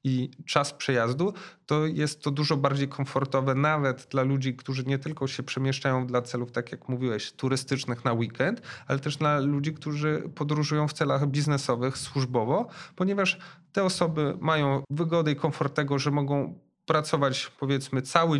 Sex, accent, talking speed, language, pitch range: male, native, 155 wpm, Polish, 130-150 Hz